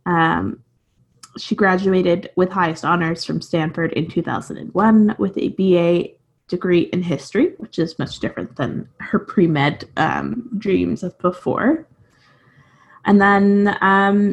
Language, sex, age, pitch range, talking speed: English, female, 20-39, 170-220 Hz, 125 wpm